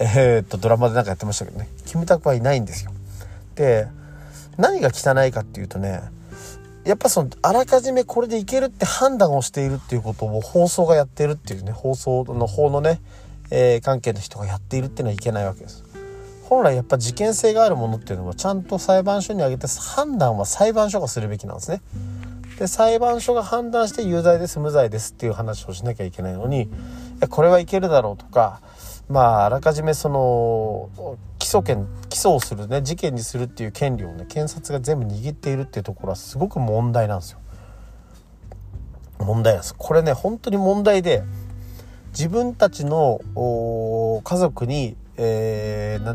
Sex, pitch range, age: male, 100-150 Hz, 40-59